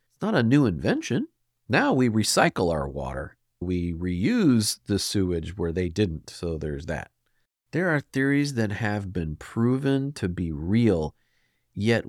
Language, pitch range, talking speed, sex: English, 90-120 Hz, 150 wpm, male